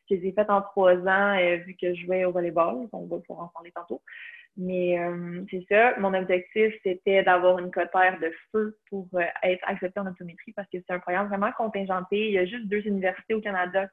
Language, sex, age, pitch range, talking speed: French, female, 20-39, 180-205 Hz, 225 wpm